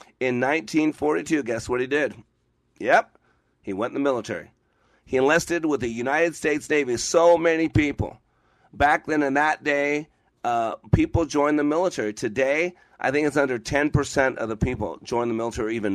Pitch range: 110-150 Hz